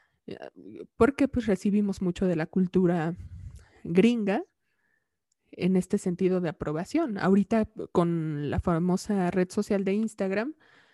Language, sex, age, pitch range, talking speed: Spanish, male, 20-39, 185-220 Hz, 115 wpm